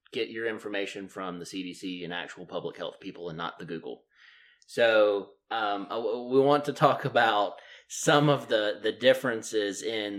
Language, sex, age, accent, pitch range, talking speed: English, male, 30-49, American, 100-140 Hz, 165 wpm